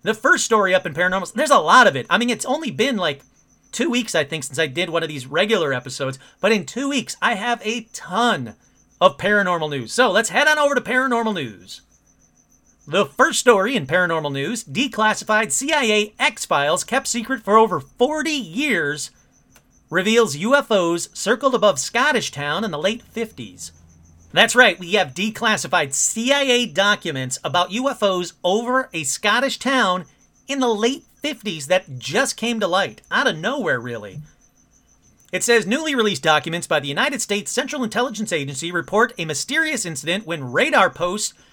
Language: English